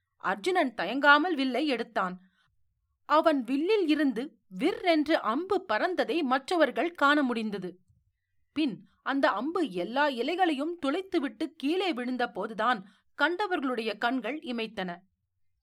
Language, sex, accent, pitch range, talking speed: Tamil, female, native, 210-330 Hz, 75 wpm